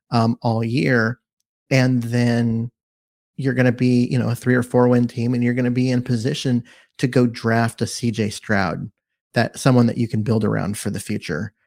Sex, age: male, 30-49